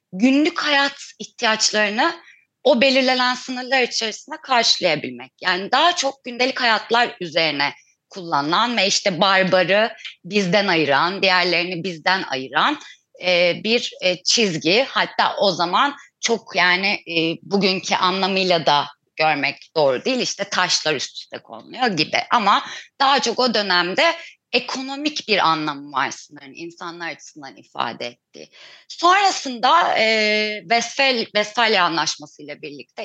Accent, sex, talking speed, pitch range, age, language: native, female, 110 wpm, 170-235 Hz, 30-49, Turkish